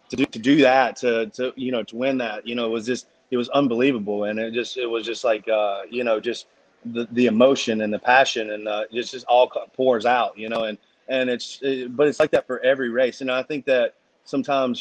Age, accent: 30-49, American